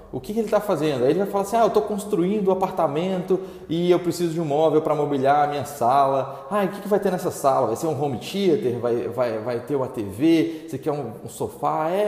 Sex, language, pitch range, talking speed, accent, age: male, Portuguese, 130-175 Hz, 265 wpm, Brazilian, 20-39